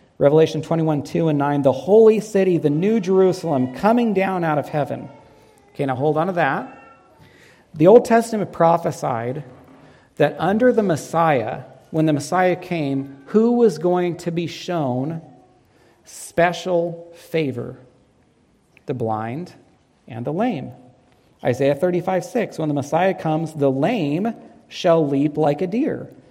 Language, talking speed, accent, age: English, 140 wpm, American, 40-59